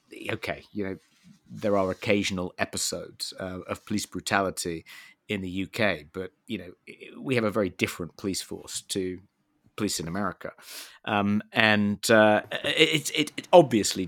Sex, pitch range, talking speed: male, 90-105 Hz, 150 wpm